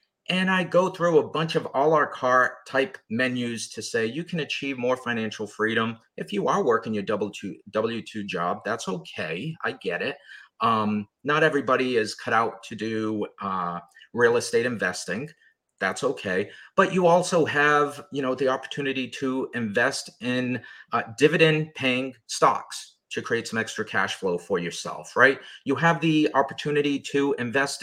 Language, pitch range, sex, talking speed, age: English, 125-160 Hz, male, 165 wpm, 30-49